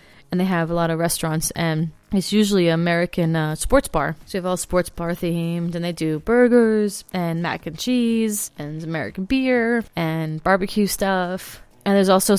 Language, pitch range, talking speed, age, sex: English, 170-205 Hz, 190 wpm, 20-39, female